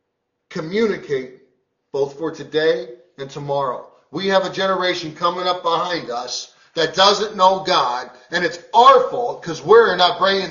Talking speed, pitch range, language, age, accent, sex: 150 wpm, 170-225 Hz, English, 40-59, American, male